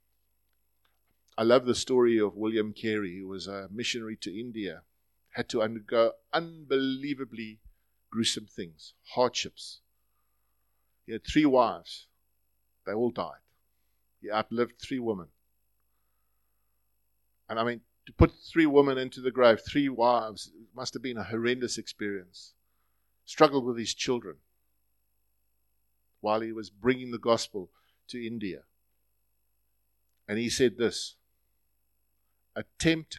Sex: male